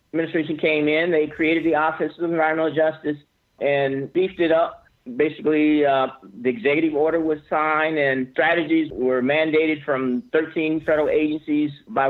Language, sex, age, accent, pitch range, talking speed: English, male, 50-69, American, 145-175 Hz, 150 wpm